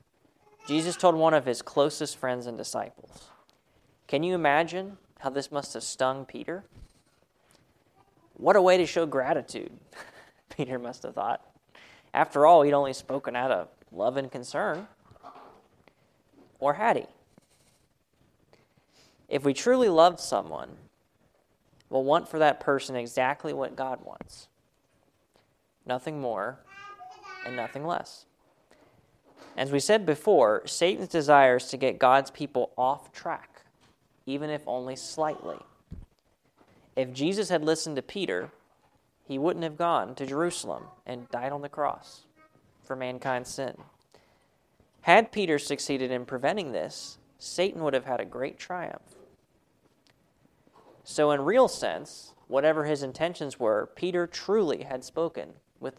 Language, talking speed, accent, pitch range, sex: English, 130 wpm, American, 130-170 Hz, male